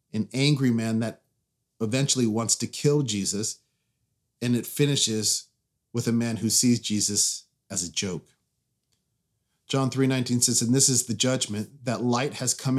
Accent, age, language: American, 40-59, English